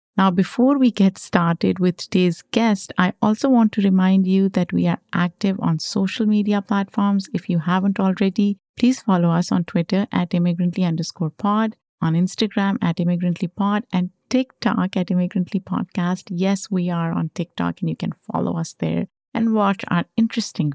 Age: 50-69